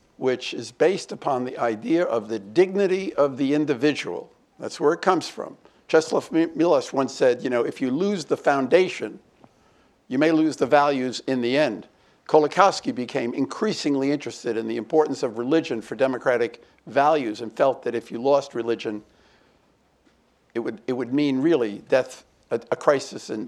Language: English